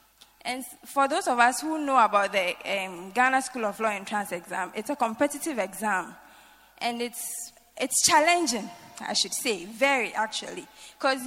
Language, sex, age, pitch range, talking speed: English, female, 20-39, 225-310 Hz, 165 wpm